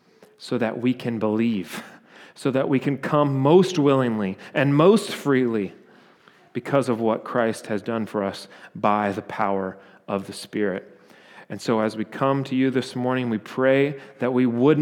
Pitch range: 115-145 Hz